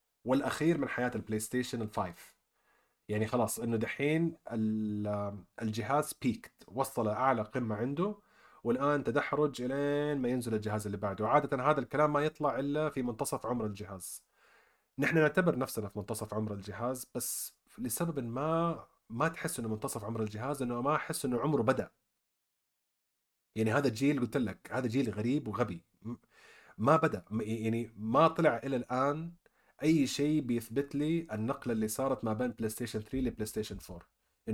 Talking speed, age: 150 wpm, 30-49